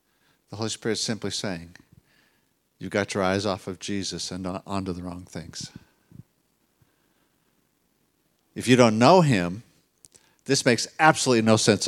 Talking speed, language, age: 140 wpm, English, 50-69